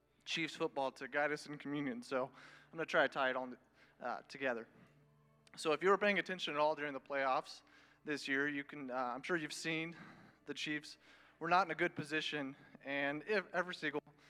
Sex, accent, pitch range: male, American, 135-160 Hz